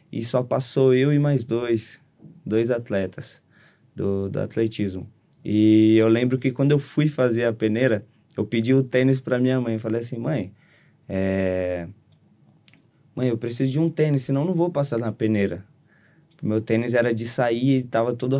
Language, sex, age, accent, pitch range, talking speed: Portuguese, male, 20-39, Brazilian, 115-135 Hz, 180 wpm